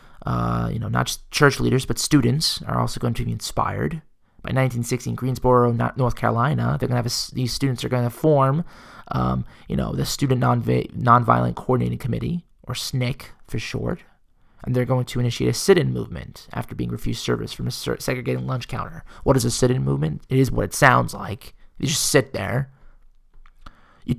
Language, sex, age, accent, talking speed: English, male, 20-39, American, 190 wpm